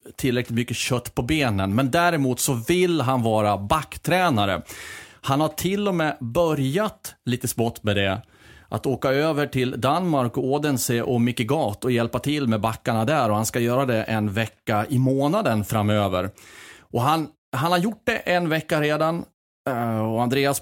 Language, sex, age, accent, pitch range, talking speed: Swedish, male, 30-49, native, 110-145 Hz, 170 wpm